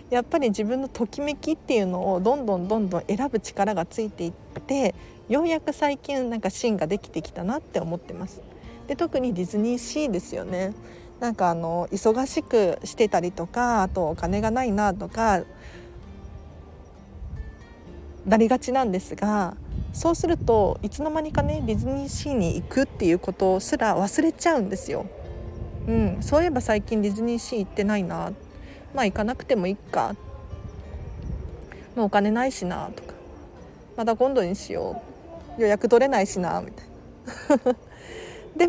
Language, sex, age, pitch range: Japanese, female, 40-59, 185-265 Hz